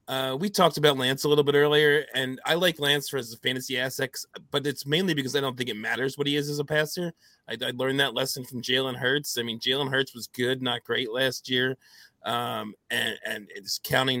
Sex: male